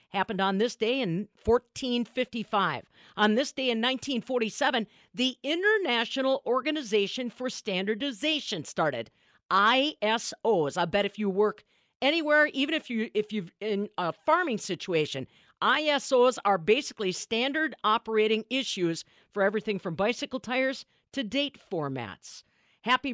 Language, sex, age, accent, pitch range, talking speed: English, female, 50-69, American, 185-255 Hz, 120 wpm